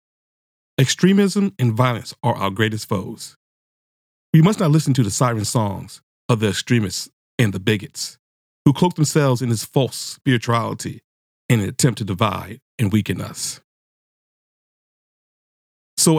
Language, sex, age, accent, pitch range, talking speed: English, male, 40-59, American, 105-145 Hz, 135 wpm